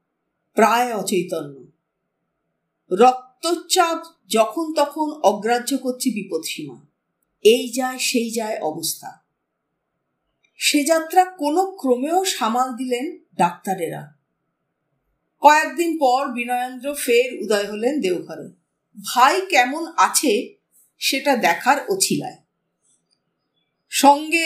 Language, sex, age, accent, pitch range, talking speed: Bengali, female, 50-69, native, 205-285 Hz, 85 wpm